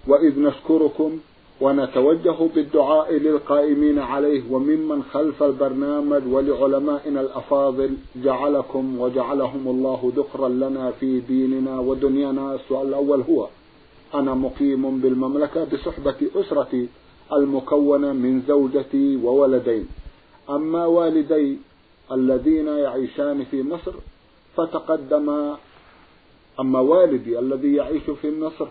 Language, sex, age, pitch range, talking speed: Arabic, male, 50-69, 135-155 Hz, 90 wpm